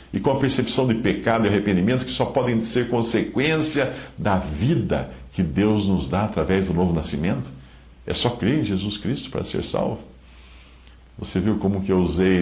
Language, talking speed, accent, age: Portuguese, 185 wpm, Brazilian, 60-79